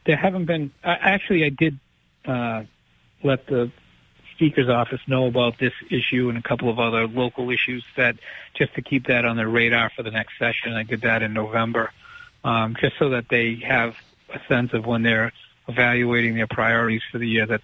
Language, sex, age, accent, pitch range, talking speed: English, male, 50-69, American, 115-135 Hz, 195 wpm